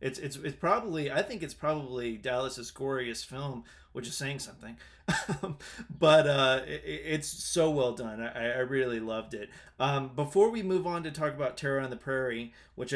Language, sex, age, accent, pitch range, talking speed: English, male, 30-49, American, 125-145 Hz, 185 wpm